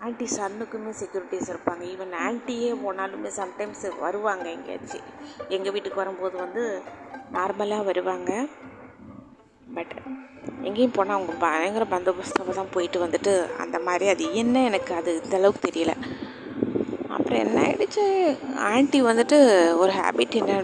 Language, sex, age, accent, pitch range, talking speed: Tamil, female, 20-39, native, 175-230 Hz, 120 wpm